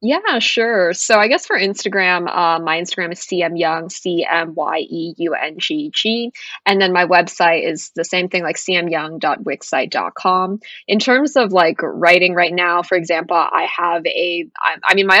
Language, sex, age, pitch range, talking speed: English, female, 20-39, 170-205 Hz, 155 wpm